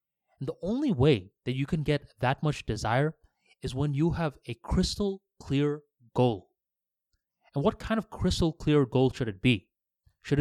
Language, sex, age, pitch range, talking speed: English, male, 20-39, 120-145 Hz, 165 wpm